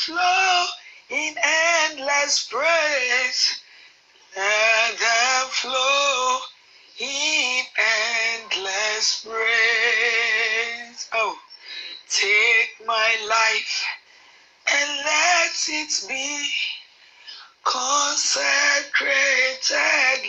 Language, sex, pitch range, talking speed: English, male, 230-370 Hz, 55 wpm